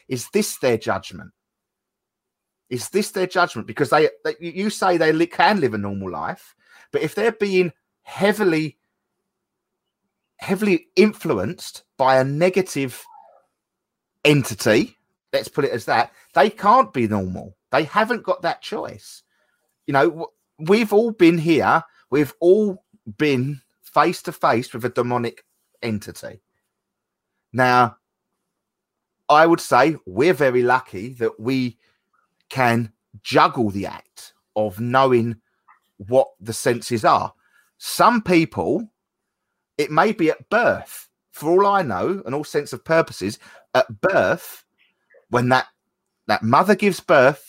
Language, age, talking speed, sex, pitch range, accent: English, 30-49, 130 wpm, male, 120-185 Hz, British